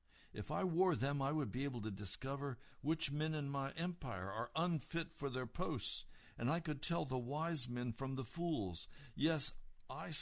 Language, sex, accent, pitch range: English, male, American, 85-120 Hz